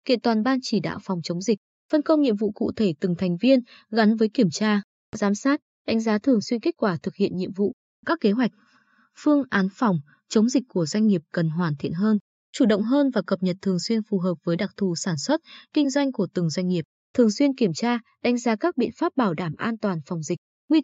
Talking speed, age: 245 wpm, 20-39